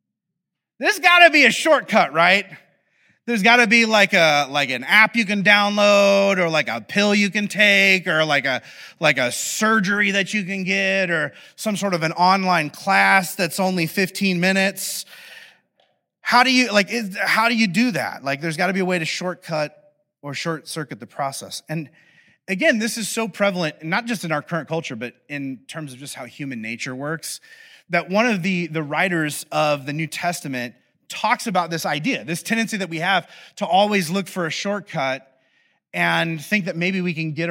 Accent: American